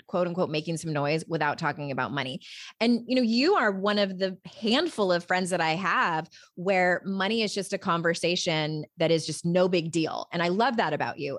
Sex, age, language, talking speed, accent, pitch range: female, 20-39, English, 215 wpm, American, 170-220 Hz